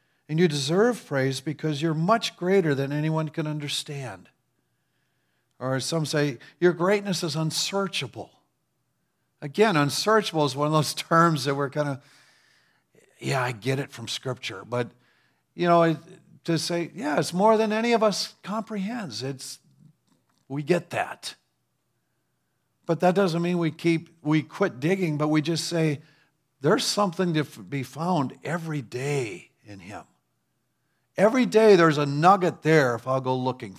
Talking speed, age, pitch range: 150 wpm, 50-69, 125-165 Hz